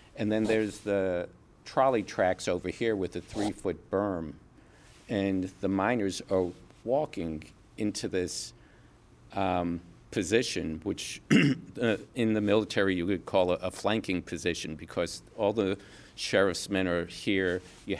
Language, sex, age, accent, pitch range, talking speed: English, male, 50-69, American, 90-110 Hz, 135 wpm